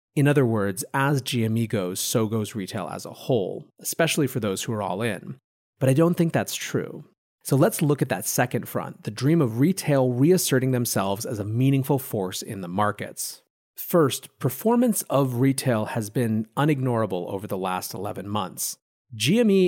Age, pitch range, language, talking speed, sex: 30-49, 110-150 Hz, English, 175 wpm, male